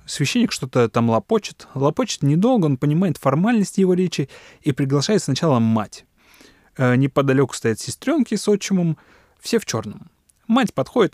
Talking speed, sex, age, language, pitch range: 140 wpm, male, 20-39, Russian, 125-190 Hz